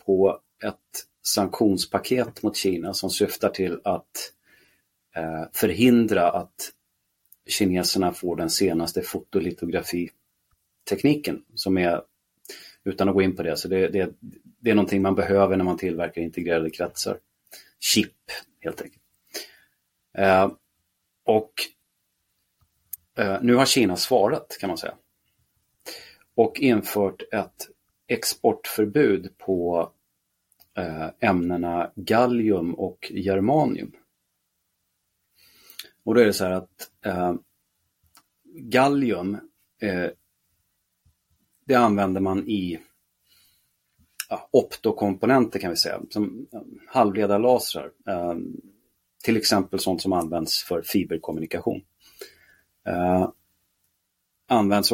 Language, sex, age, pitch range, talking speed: Swedish, male, 30-49, 90-105 Hz, 90 wpm